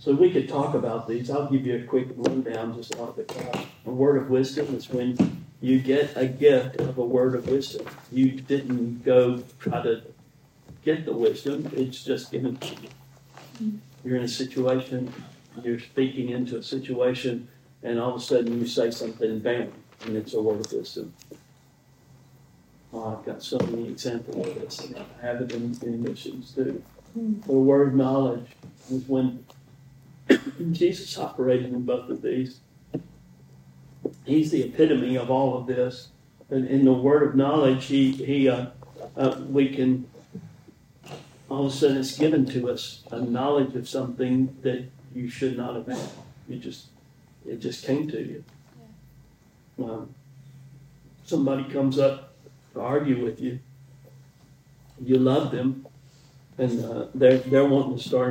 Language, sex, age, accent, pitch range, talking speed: English, male, 50-69, American, 125-140 Hz, 160 wpm